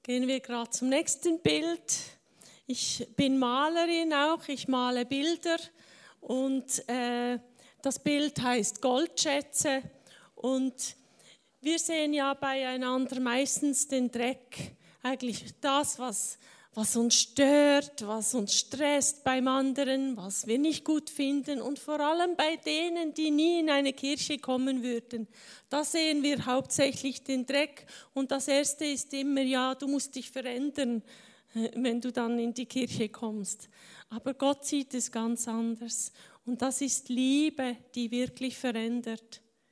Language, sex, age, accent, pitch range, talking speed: German, female, 40-59, Swiss, 240-280 Hz, 135 wpm